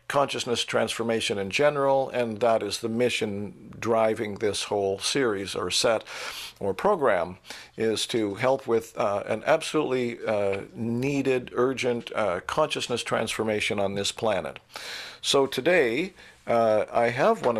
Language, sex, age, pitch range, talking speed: English, male, 50-69, 105-125 Hz, 135 wpm